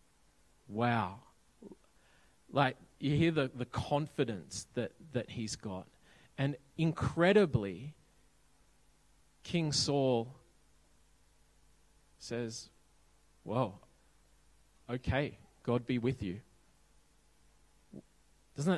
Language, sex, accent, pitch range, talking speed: English, male, Australian, 115-145 Hz, 75 wpm